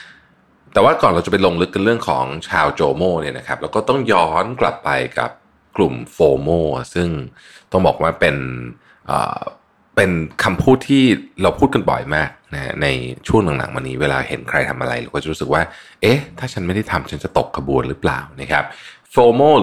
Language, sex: Thai, male